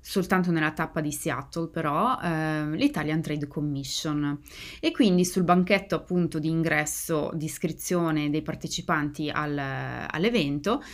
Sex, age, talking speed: female, 20-39, 125 wpm